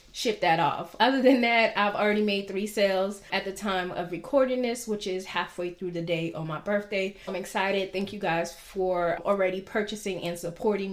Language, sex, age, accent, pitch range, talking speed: English, female, 20-39, American, 180-210 Hz, 200 wpm